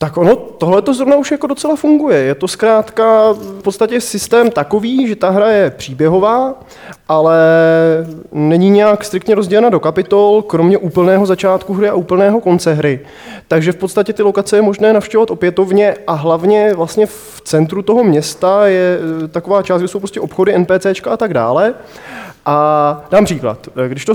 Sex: male